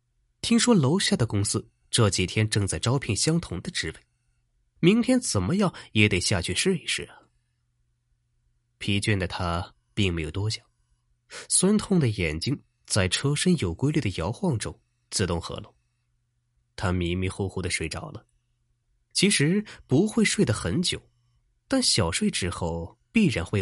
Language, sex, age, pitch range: Chinese, male, 20-39, 90-135 Hz